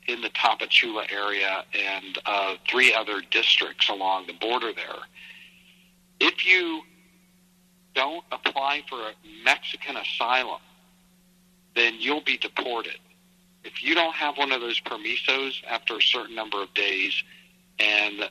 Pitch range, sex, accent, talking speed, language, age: 110-180 Hz, male, American, 130 wpm, English, 50-69